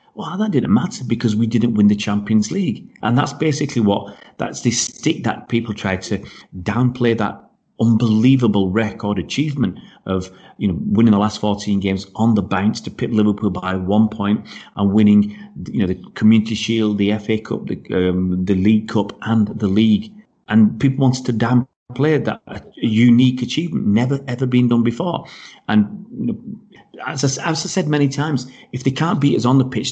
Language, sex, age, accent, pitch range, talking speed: English, male, 40-59, British, 105-130 Hz, 185 wpm